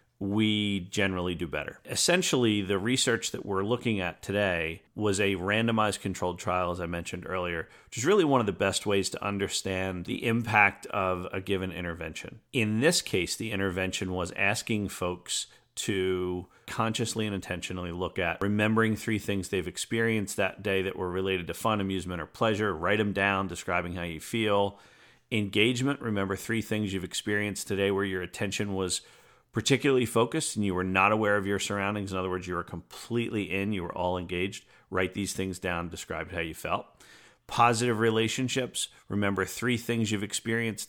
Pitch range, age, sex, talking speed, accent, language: 95-110 Hz, 40-59, male, 175 wpm, American, English